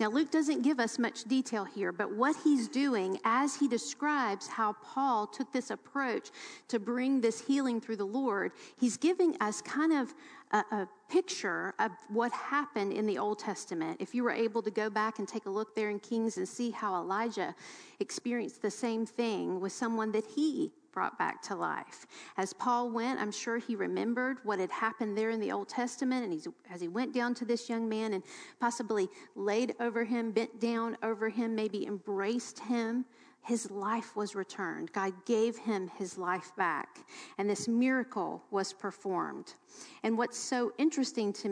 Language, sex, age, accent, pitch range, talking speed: English, female, 40-59, American, 210-255 Hz, 185 wpm